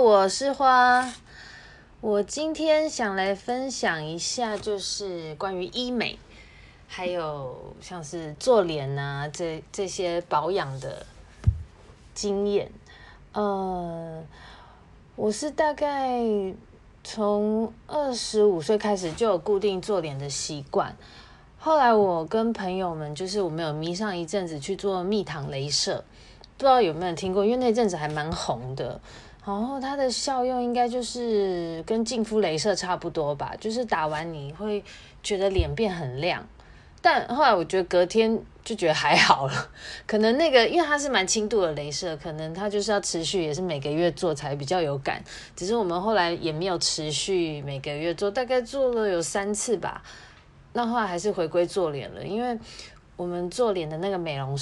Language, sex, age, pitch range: Chinese, female, 20-39, 160-220 Hz